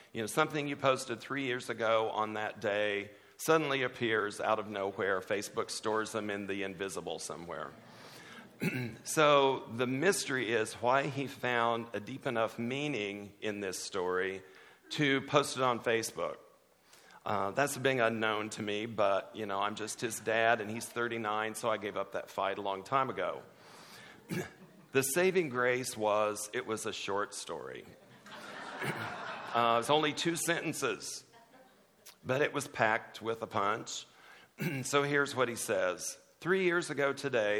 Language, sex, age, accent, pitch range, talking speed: English, male, 50-69, American, 110-145 Hz, 155 wpm